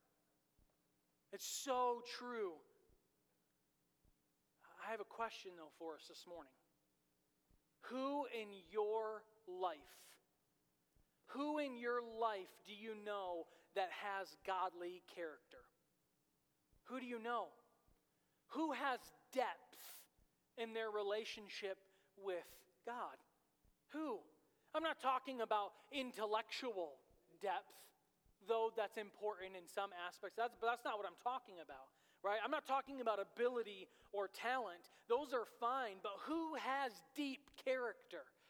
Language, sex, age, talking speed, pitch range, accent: English, male, 40-59, 120 wpm, 200-270 Hz, American